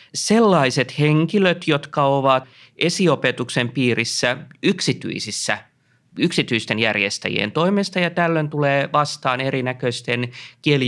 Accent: native